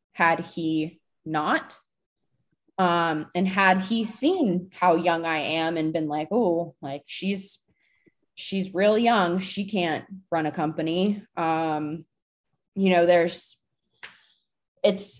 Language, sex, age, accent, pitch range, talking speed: English, female, 20-39, American, 170-205 Hz, 120 wpm